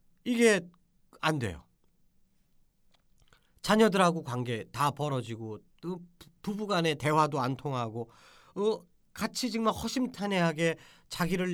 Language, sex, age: Korean, male, 40-59